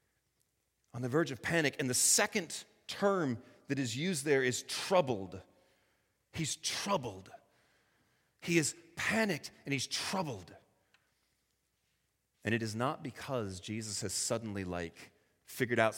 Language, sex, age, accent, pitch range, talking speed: English, male, 30-49, American, 105-150 Hz, 130 wpm